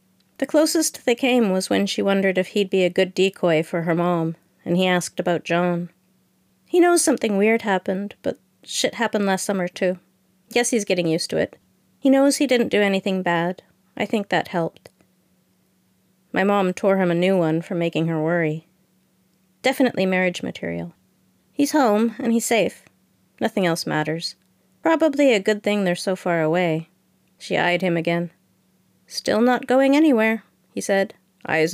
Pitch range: 175-230 Hz